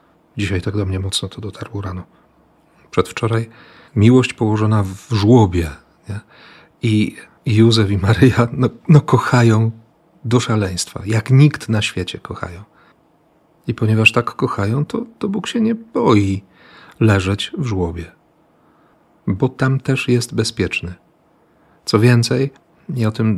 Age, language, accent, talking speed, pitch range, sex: 40-59, Polish, native, 125 wpm, 100-120 Hz, male